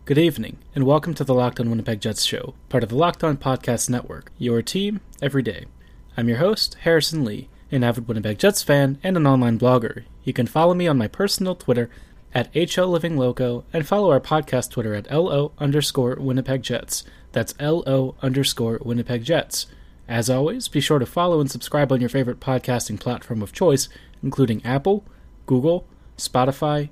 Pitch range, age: 115-145 Hz, 20-39